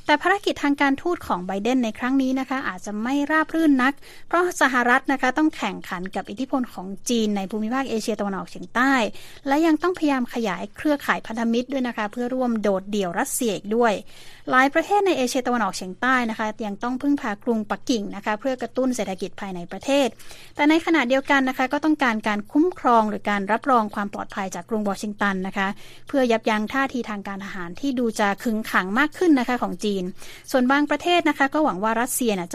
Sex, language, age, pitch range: female, Thai, 20-39, 205-270 Hz